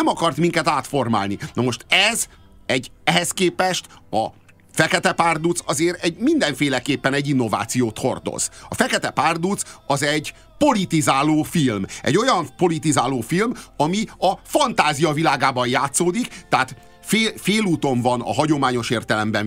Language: Hungarian